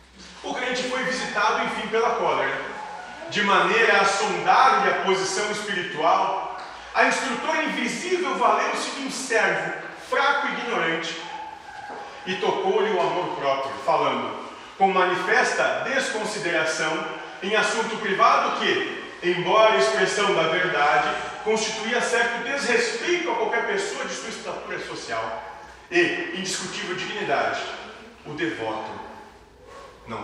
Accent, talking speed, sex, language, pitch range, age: Brazilian, 115 wpm, male, Portuguese, 170-240 Hz, 40-59